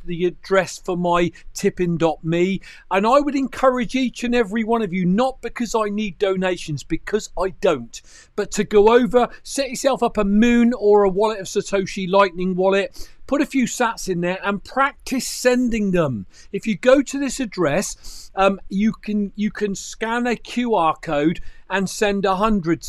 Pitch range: 170-220 Hz